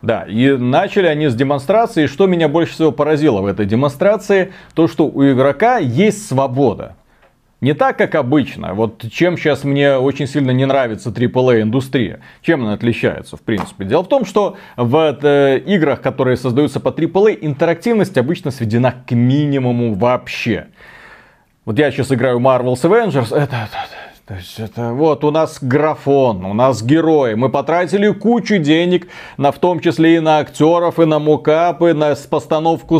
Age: 30-49